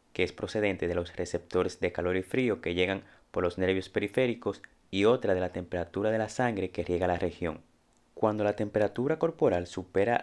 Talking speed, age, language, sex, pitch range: 195 wpm, 30-49, Spanish, male, 90-115 Hz